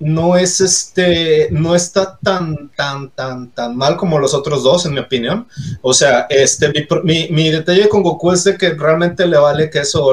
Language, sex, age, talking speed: Spanish, male, 30-49, 205 wpm